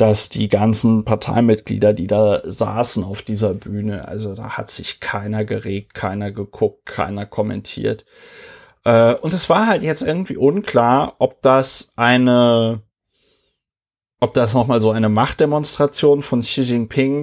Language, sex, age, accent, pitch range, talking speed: German, male, 30-49, German, 105-125 Hz, 140 wpm